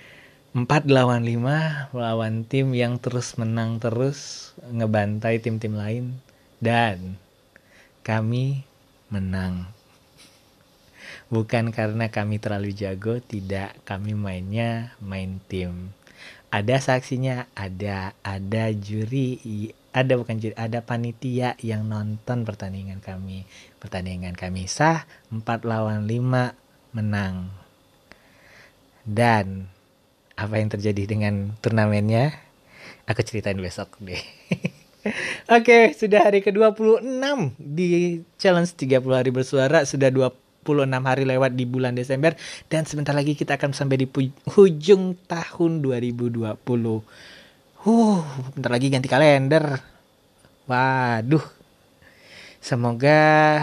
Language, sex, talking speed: Indonesian, male, 100 wpm